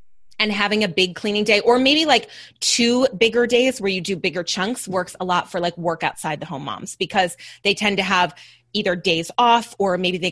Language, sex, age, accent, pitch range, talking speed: English, female, 20-39, American, 180-230 Hz, 220 wpm